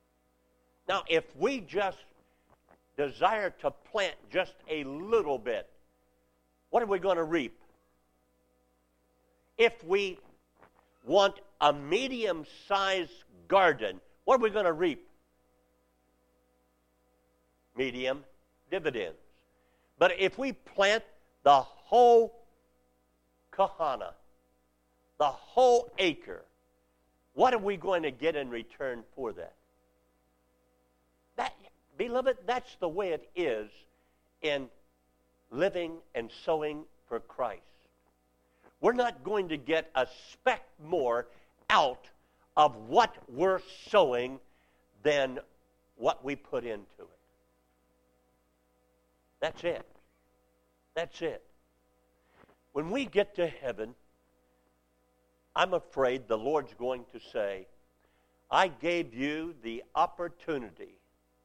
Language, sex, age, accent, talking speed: English, male, 50-69, American, 100 wpm